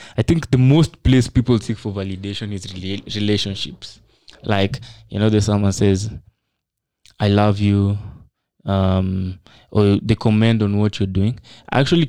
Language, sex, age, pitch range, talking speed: English, male, 20-39, 100-115 Hz, 150 wpm